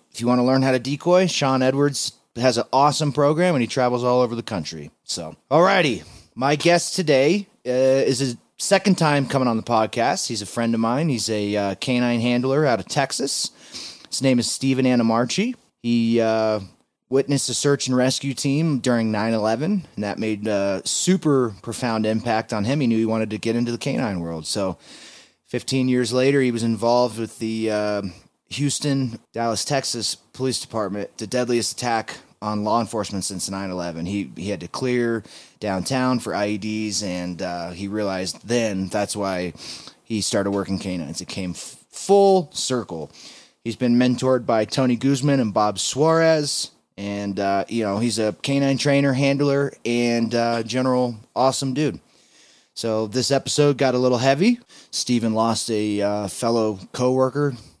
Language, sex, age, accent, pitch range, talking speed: English, male, 30-49, American, 105-135 Hz, 175 wpm